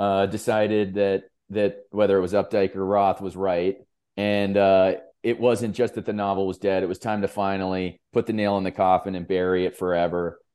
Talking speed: 210 wpm